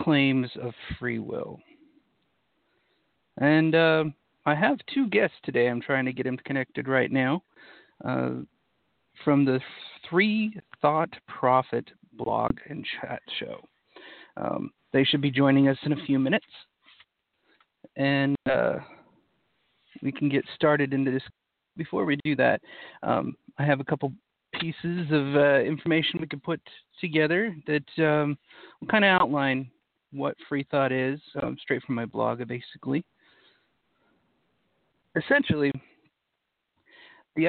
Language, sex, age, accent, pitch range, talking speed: English, male, 40-59, American, 130-155 Hz, 130 wpm